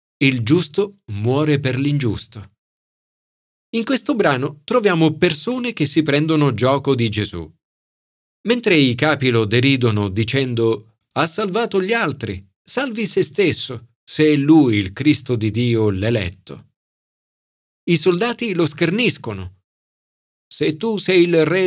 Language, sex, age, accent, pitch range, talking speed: Italian, male, 40-59, native, 115-185 Hz, 125 wpm